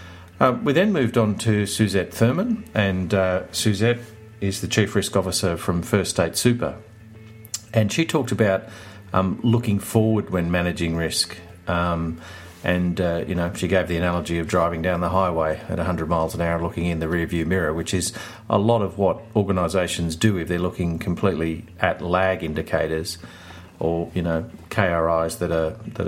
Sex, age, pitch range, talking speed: male, 40-59, 85-110 Hz, 175 wpm